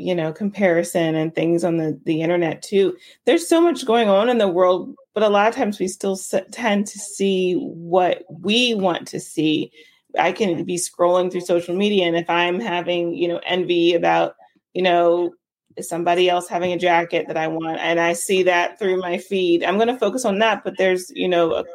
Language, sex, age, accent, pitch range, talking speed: English, female, 30-49, American, 170-215 Hz, 210 wpm